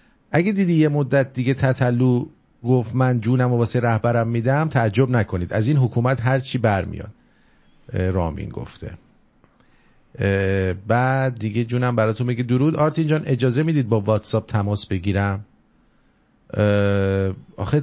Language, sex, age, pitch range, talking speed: English, male, 50-69, 100-135 Hz, 130 wpm